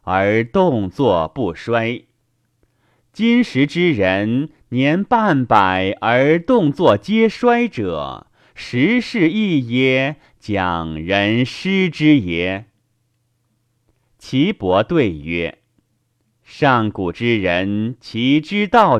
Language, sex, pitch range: Chinese, male, 105-155 Hz